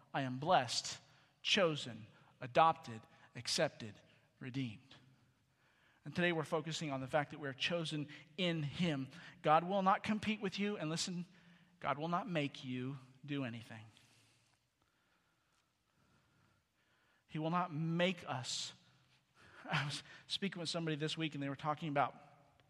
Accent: American